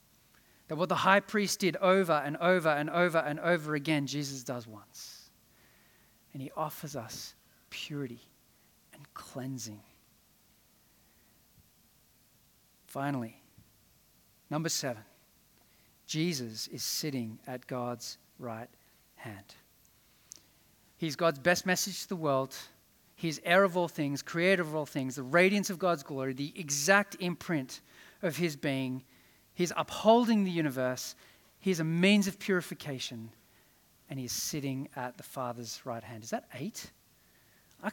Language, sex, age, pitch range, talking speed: English, male, 40-59, 135-195 Hz, 130 wpm